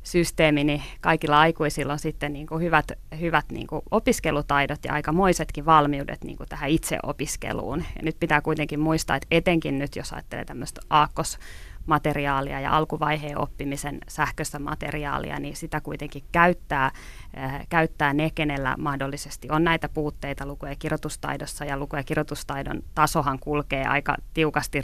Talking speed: 140 wpm